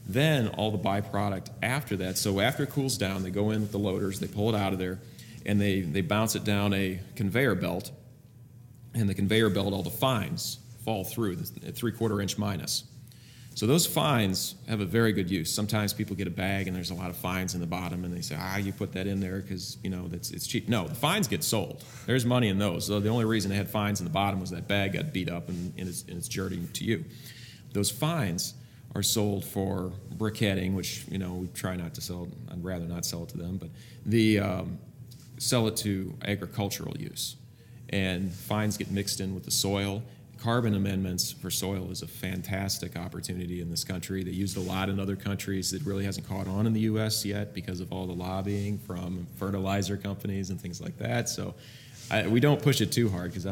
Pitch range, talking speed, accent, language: 95-115 Hz, 225 wpm, American, English